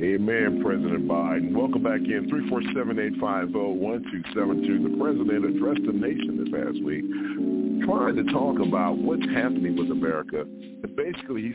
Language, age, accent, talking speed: English, 50-69, American, 145 wpm